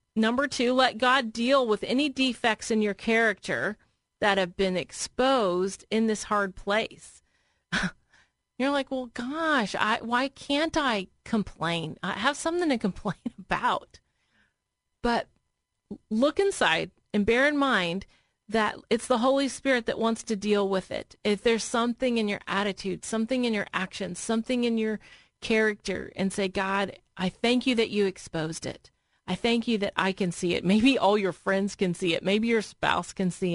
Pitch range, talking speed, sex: 200-260 Hz, 170 wpm, female